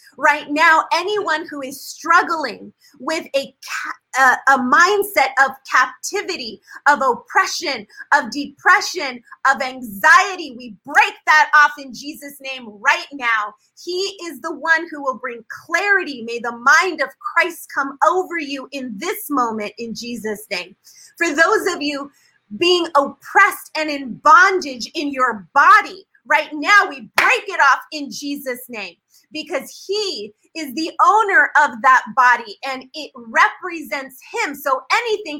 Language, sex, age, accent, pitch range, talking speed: English, female, 30-49, American, 265-345 Hz, 140 wpm